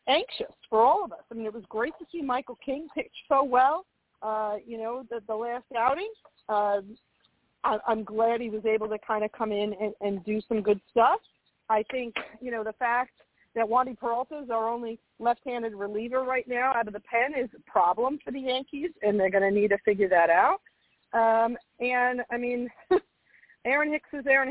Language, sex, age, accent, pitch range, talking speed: English, female, 40-59, American, 215-255 Hz, 210 wpm